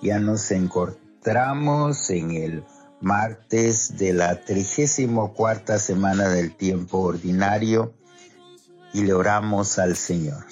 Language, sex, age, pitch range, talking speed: Spanish, male, 50-69, 100-125 Hz, 110 wpm